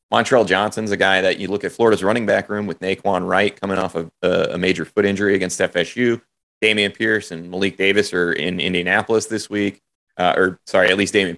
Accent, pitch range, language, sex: American, 90-105 Hz, English, male